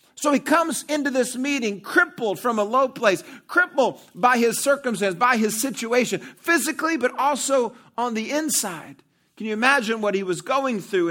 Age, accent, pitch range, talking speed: 40-59, American, 180-260 Hz, 175 wpm